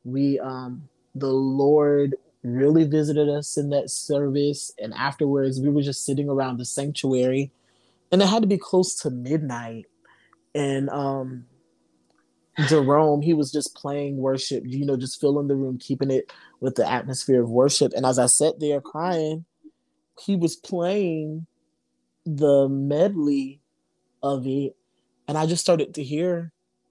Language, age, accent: English, 20-39, American